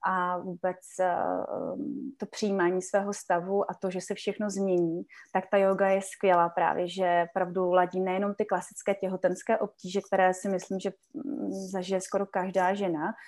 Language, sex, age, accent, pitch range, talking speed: Czech, female, 20-39, native, 180-200 Hz, 160 wpm